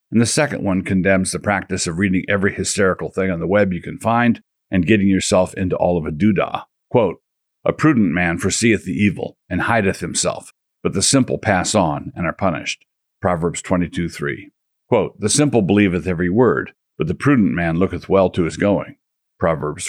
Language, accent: English, American